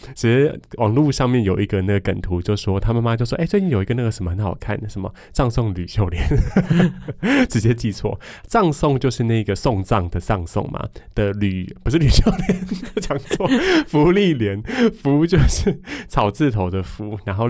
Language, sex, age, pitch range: Chinese, male, 20-39, 95-120 Hz